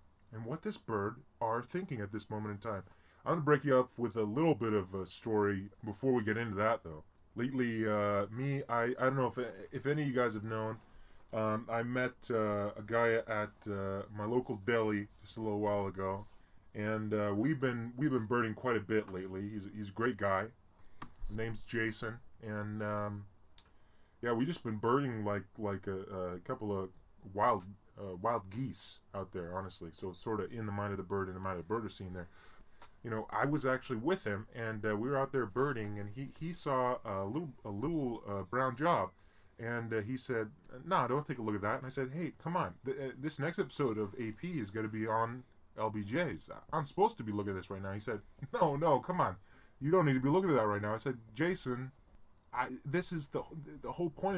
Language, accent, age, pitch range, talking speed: English, American, 10-29, 100-130 Hz, 225 wpm